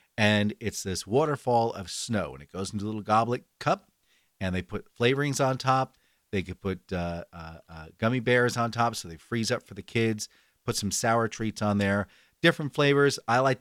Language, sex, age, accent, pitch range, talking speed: English, male, 40-59, American, 100-135 Hz, 205 wpm